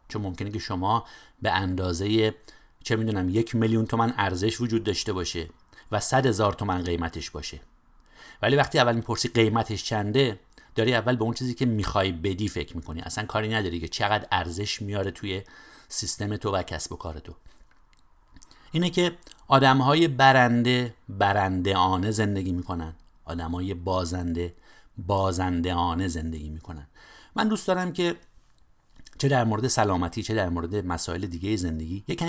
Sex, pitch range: male, 90-120 Hz